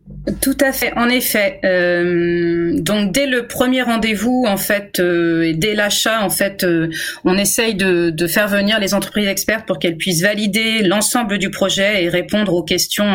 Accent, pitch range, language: French, 175-215 Hz, French